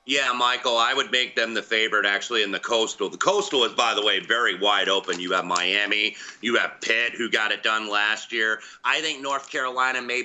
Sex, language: male, English